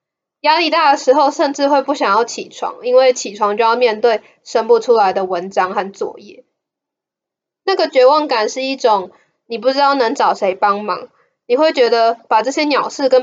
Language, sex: Chinese, female